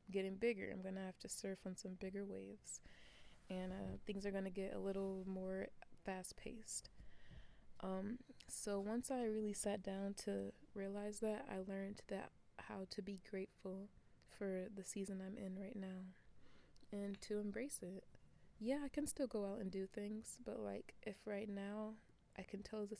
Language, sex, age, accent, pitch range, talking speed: English, female, 20-39, American, 190-215 Hz, 175 wpm